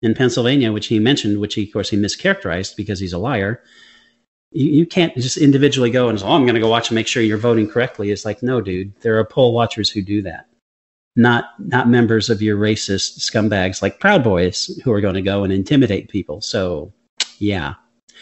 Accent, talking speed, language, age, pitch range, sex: American, 215 wpm, English, 40-59, 110-135 Hz, male